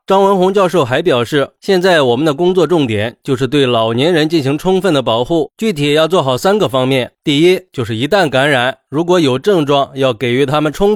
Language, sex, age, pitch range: Chinese, male, 20-39, 135-185 Hz